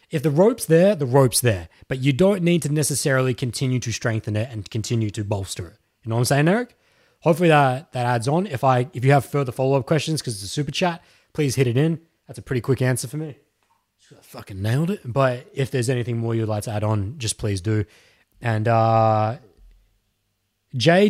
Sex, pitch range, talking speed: male, 110-150 Hz, 220 wpm